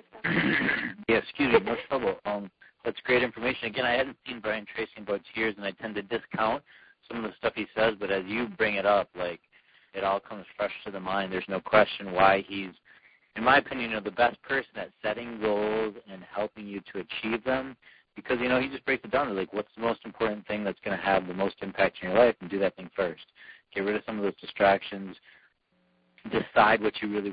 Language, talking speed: English, 235 wpm